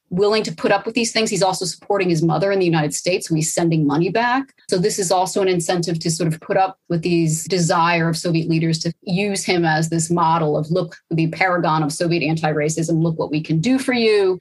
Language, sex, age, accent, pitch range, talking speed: English, female, 30-49, American, 165-200 Hz, 235 wpm